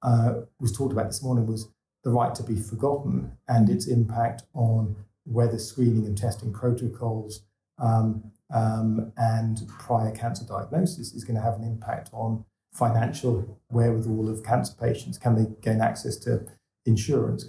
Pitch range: 110-120 Hz